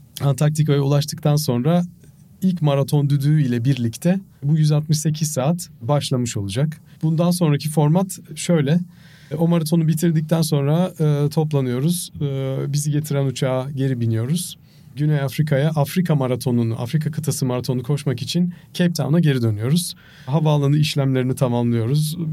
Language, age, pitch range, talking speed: Turkish, 40-59, 135-160 Hz, 120 wpm